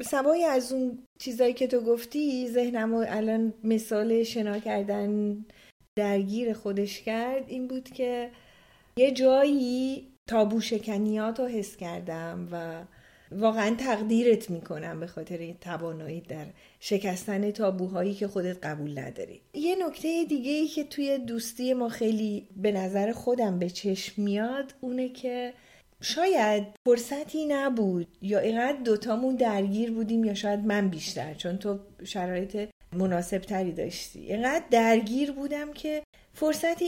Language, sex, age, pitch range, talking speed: Persian, female, 40-59, 200-270 Hz, 130 wpm